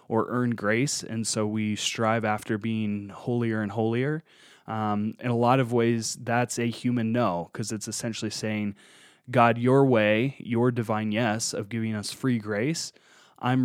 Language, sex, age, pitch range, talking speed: English, male, 20-39, 110-125 Hz, 165 wpm